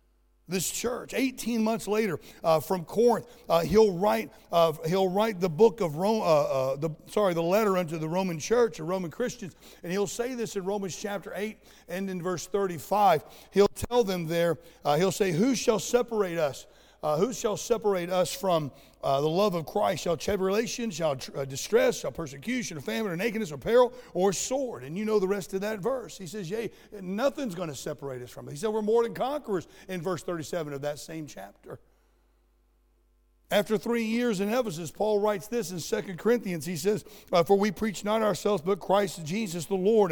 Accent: American